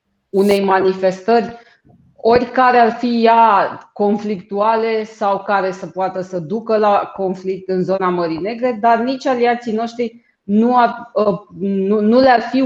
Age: 20-39